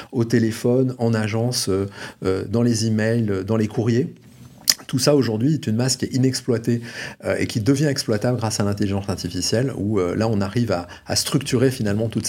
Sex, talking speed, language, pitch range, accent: male, 195 wpm, French, 100-120 Hz, French